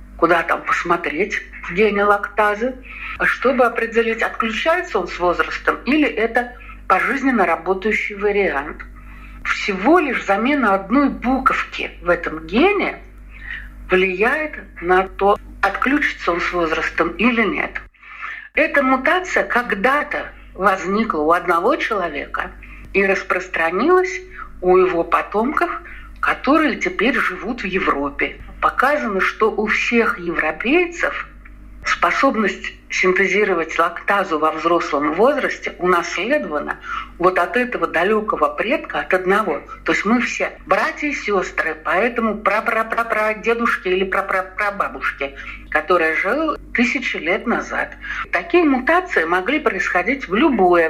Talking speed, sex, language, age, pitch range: 110 wpm, female, Russian, 50-69, 185-270 Hz